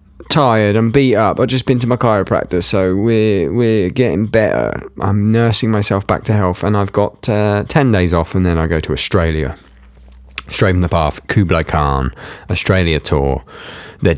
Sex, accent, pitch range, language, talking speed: male, British, 85-110 Hz, English, 180 wpm